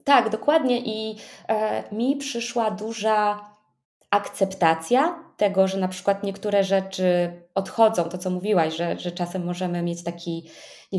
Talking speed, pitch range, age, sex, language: 135 wpm, 185-215 Hz, 20-39, female, Polish